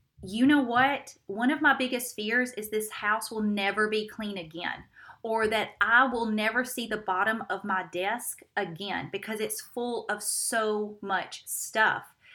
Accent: American